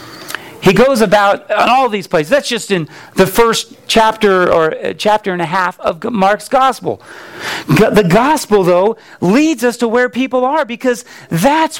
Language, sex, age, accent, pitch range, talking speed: English, male, 40-59, American, 185-260 Hz, 165 wpm